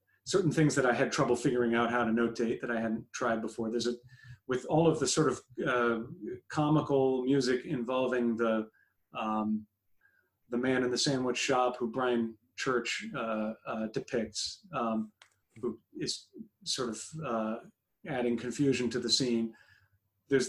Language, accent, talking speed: English, American, 160 wpm